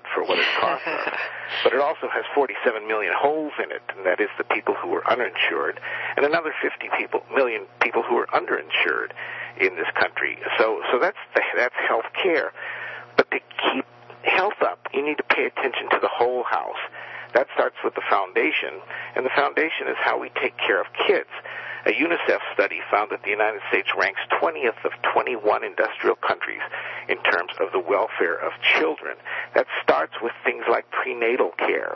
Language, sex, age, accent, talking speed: English, male, 50-69, American, 180 wpm